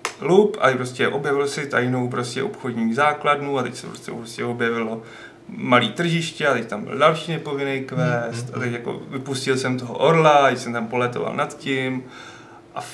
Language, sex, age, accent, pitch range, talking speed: Czech, male, 30-49, native, 125-145 Hz, 175 wpm